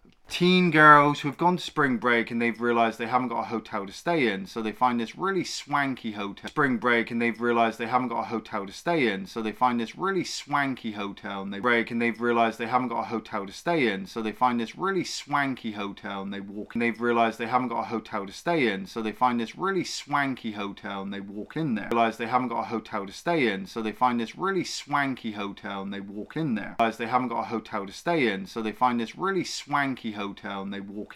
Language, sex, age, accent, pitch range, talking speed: English, male, 20-39, British, 110-145 Hz, 260 wpm